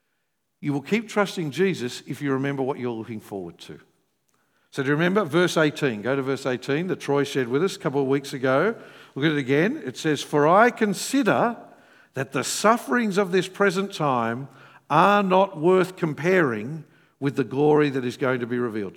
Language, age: English, 50-69